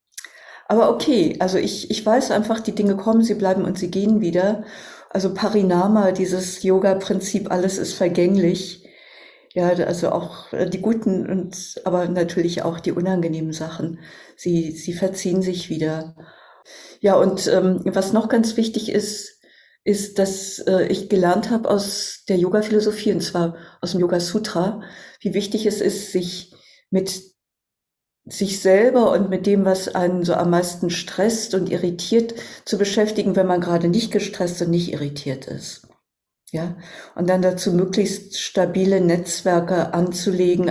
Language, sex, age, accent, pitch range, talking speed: German, female, 50-69, German, 175-200 Hz, 145 wpm